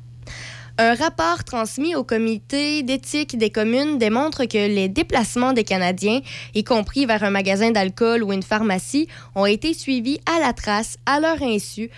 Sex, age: female, 20-39